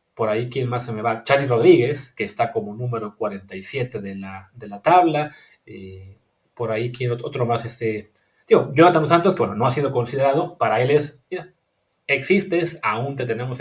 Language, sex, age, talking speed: English, male, 30-49, 190 wpm